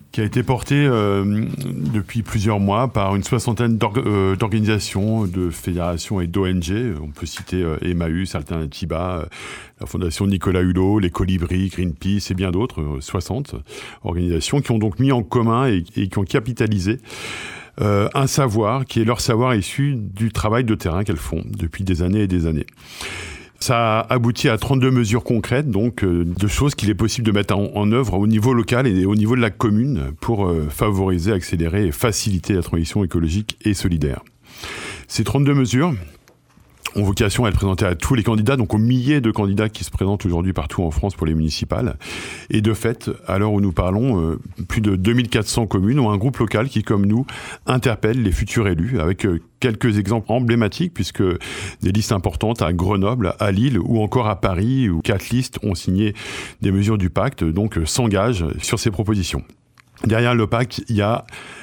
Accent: French